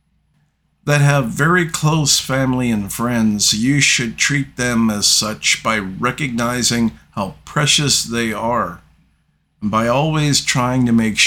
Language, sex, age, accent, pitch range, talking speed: English, male, 50-69, American, 105-140 Hz, 135 wpm